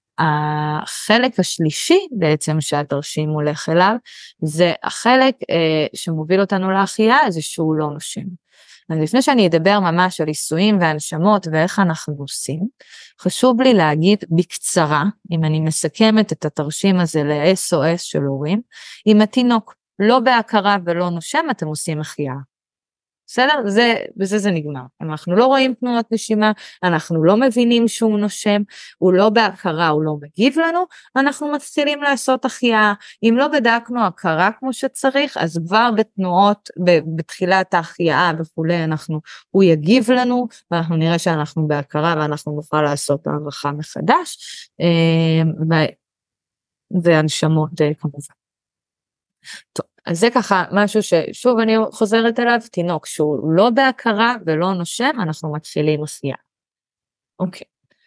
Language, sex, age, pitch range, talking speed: Hebrew, female, 20-39, 155-220 Hz, 125 wpm